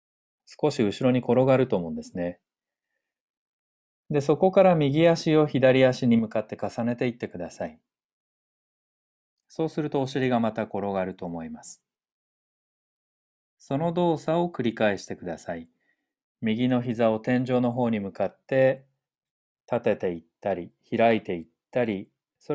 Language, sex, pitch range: Japanese, male, 100-140 Hz